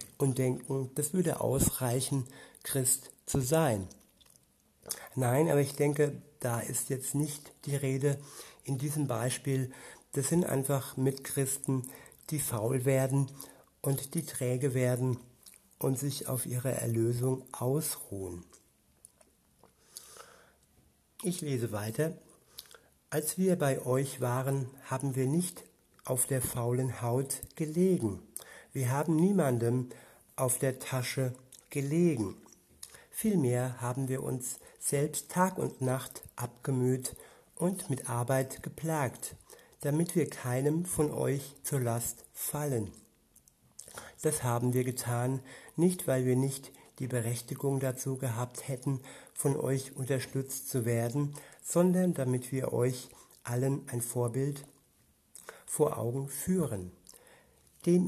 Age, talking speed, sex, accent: 60-79, 115 wpm, male, German